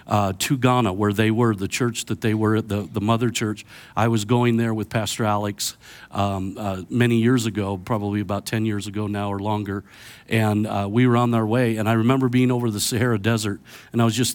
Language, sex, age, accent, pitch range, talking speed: English, male, 50-69, American, 105-120 Hz, 225 wpm